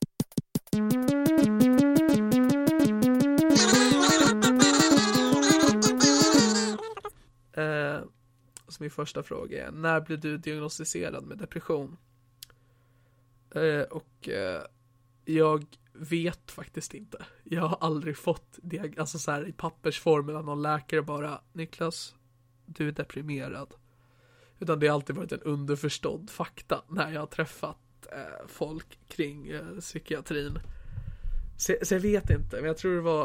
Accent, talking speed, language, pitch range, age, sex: native, 110 wpm, Swedish, 120-165 Hz, 20-39, male